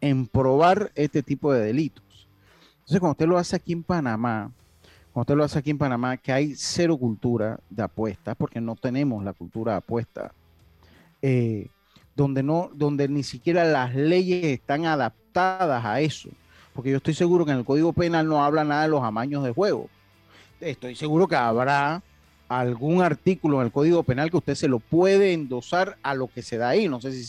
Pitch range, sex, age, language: 115-160 Hz, male, 40-59, Spanish